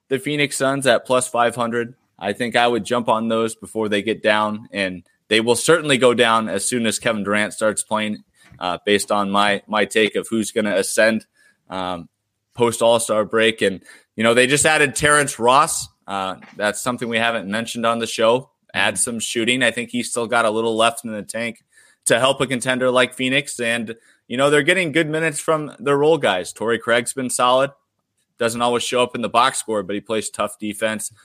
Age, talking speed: 20-39, 210 wpm